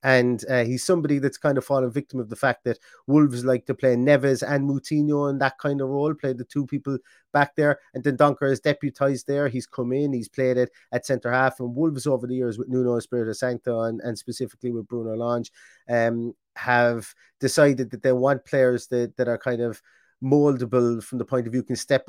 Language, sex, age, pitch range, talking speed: English, male, 30-49, 120-140 Hz, 220 wpm